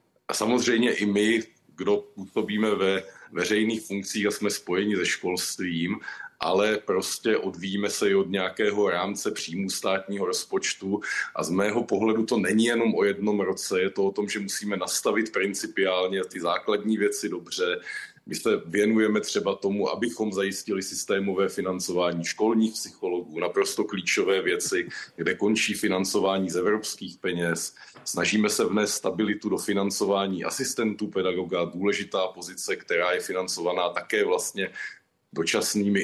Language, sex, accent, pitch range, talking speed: Czech, male, native, 95-110 Hz, 140 wpm